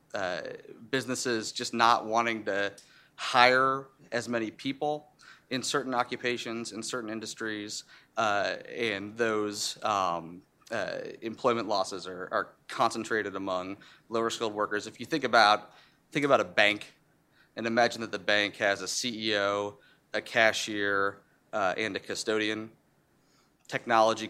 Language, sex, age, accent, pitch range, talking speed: English, male, 30-49, American, 100-115 Hz, 130 wpm